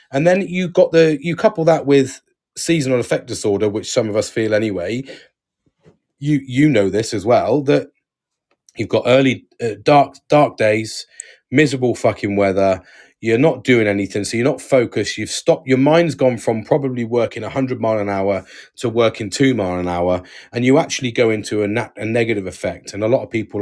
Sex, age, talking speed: male, 30-49, 195 wpm